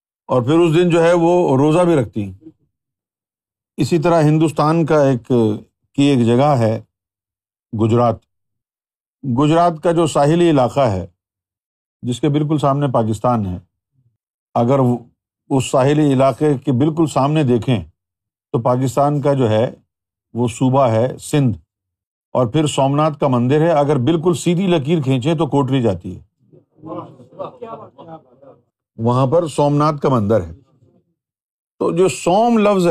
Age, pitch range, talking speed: 50-69, 115-165 Hz, 135 wpm